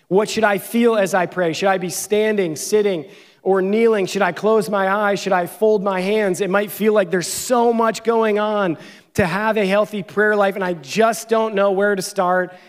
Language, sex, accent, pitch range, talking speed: English, male, American, 170-200 Hz, 220 wpm